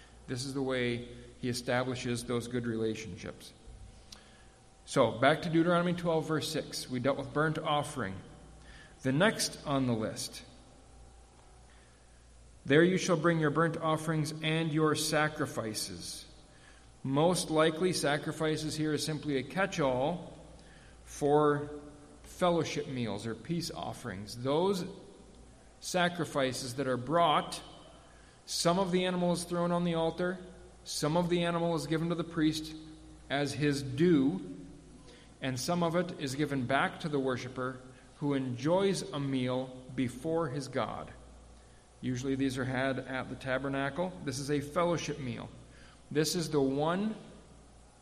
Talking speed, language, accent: 135 wpm, English, American